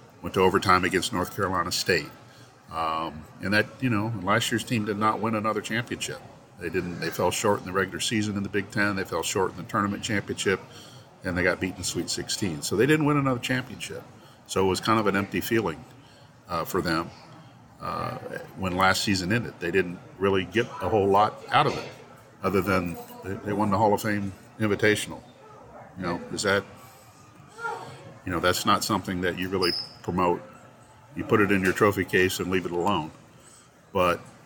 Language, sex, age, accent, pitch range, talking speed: English, male, 50-69, American, 95-110 Hz, 195 wpm